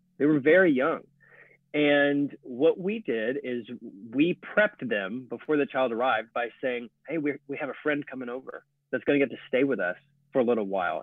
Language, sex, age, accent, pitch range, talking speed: English, male, 30-49, American, 120-155 Hz, 205 wpm